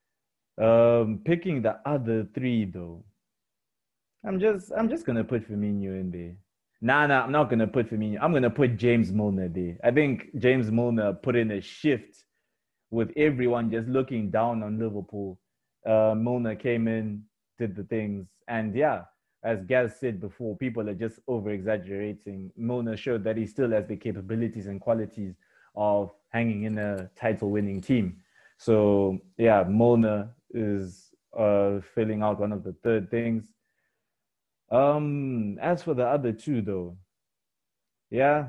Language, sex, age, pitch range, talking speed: English, male, 20-39, 100-125 Hz, 155 wpm